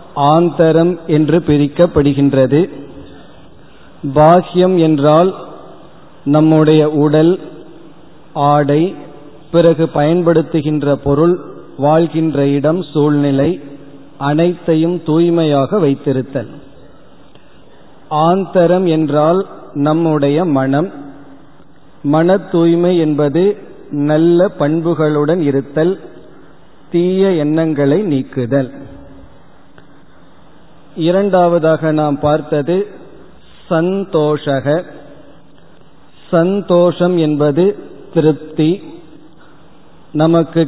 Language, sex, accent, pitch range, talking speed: Tamil, male, native, 150-175 Hz, 55 wpm